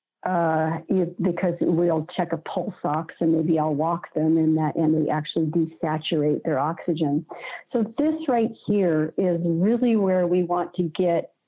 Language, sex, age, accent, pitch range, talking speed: English, female, 50-69, American, 155-180 Hz, 165 wpm